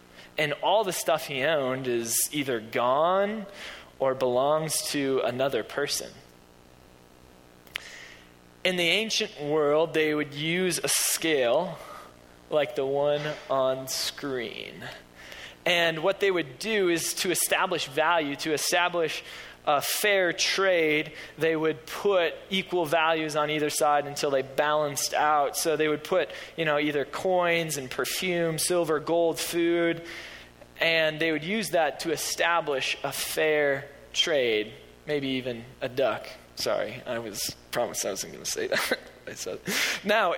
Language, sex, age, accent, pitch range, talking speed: English, male, 20-39, American, 135-175 Hz, 135 wpm